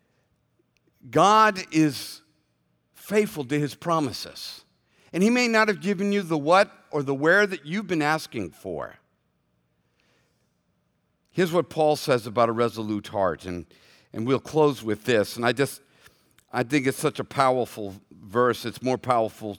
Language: English